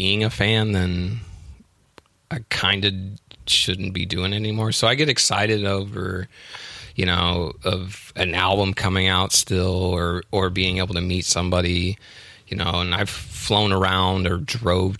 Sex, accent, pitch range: male, American, 90-105 Hz